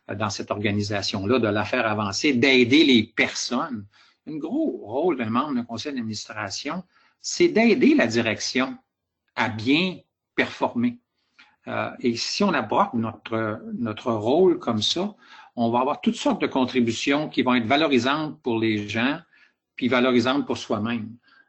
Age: 60-79